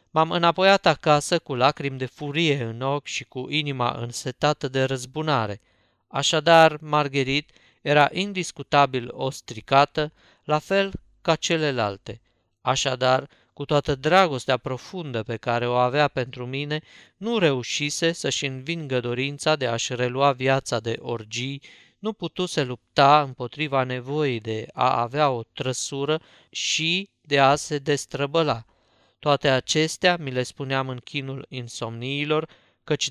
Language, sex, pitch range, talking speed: Romanian, male, 125-155 Hz, 130 wpm